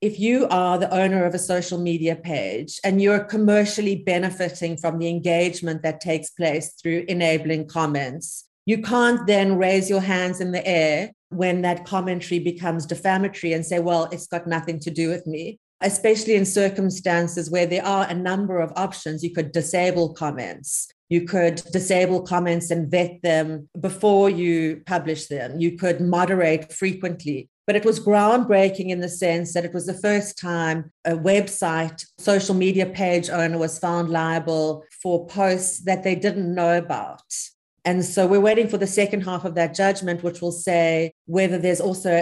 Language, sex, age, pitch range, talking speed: English, female, 40-59, 170-195 Hz, 175 wpm